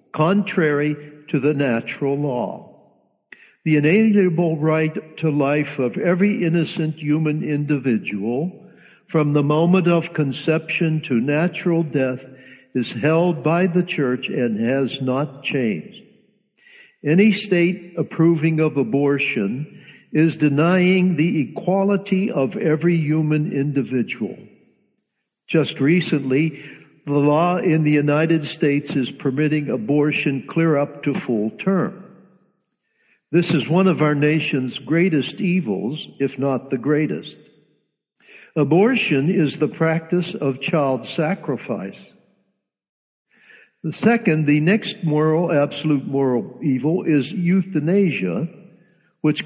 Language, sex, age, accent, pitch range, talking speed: English, male, 60-79, American, 145-180 Hz, 110 wpm